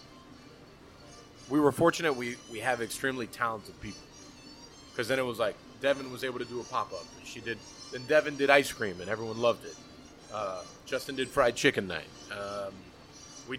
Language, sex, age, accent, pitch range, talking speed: English, male, 30-49, American, 115-140 Hz, 175 wpm